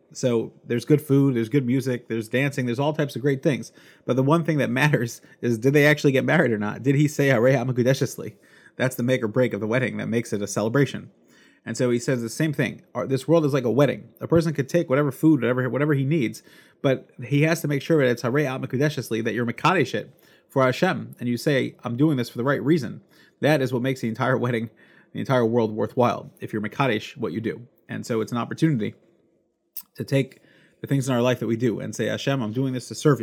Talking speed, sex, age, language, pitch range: 240 wpm, male, 30-49, English, 120-145 Hz